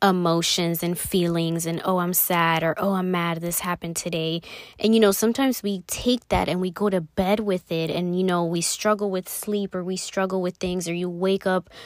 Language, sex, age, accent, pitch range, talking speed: English, female, 20-39, American, 180-215 Hz, 225 wpm